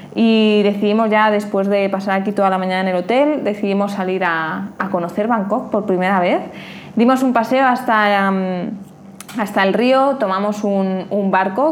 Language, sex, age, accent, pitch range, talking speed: Spanish, female, 20-39, Spanish, 185-225 Hz, 175 wpm